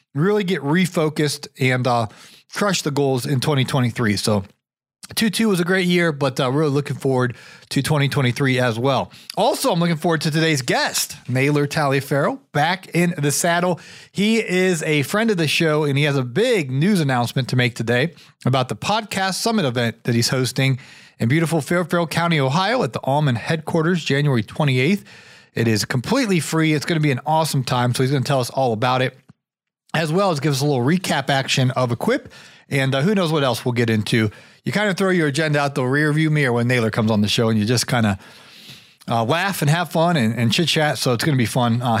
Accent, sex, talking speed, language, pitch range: American, male, 220 wpm, English, 130-175 Hz